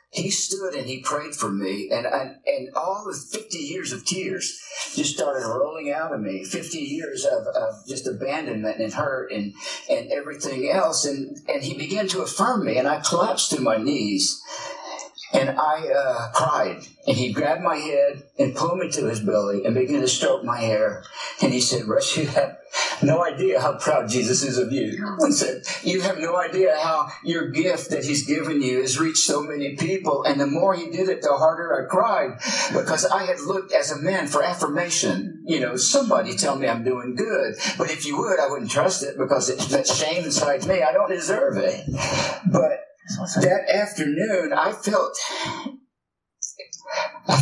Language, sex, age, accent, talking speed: English, male, 50-69, American, 190 wpm